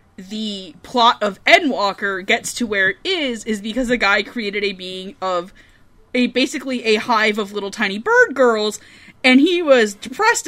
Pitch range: 205-260 Hz